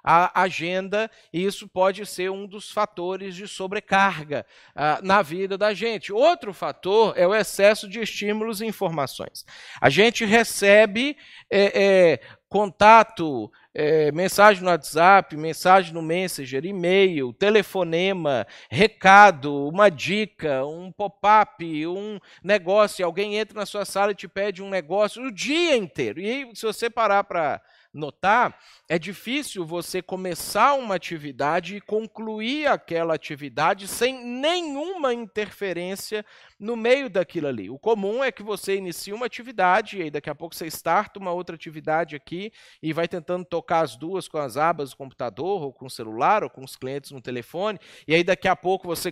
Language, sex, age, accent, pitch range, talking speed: Portuguese, male, 50-69, Brazilian, 170-215 Hz, 155 wpm